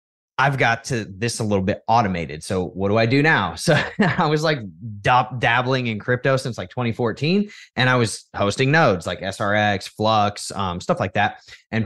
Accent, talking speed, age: American, 185 wpm, 20-39